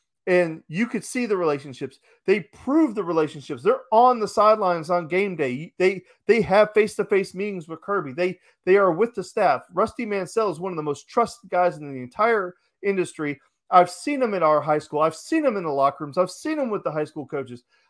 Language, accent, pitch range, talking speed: English, American, 165-235 Hz, 225 wpm